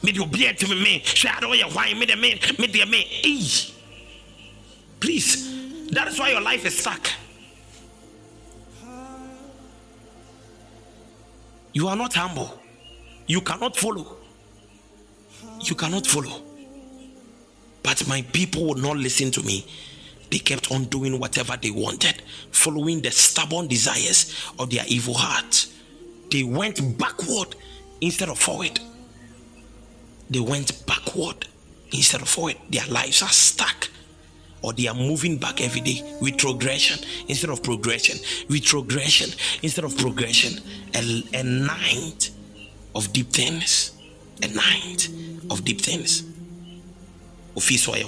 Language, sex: English, male